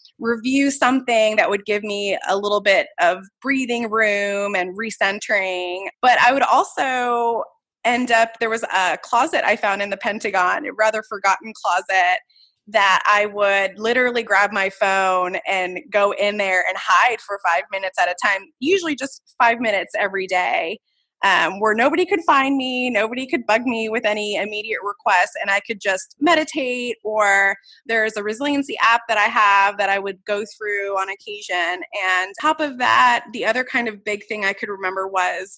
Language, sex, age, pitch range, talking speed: English, female, 20-39, 195-245 Hz, 180 wpm